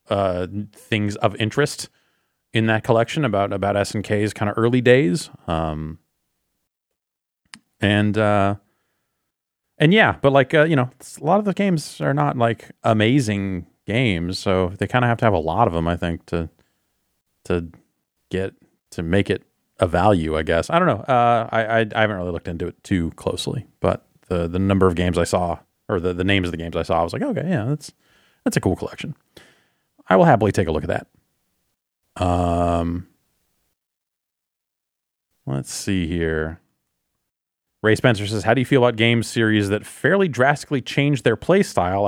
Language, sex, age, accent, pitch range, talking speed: English, male, 30-49, American, 90-120 Hz, 180 wpm